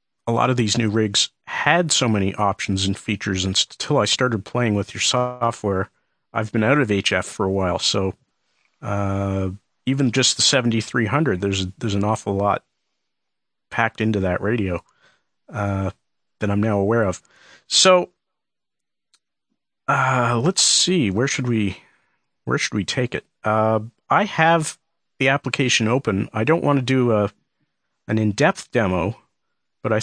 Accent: American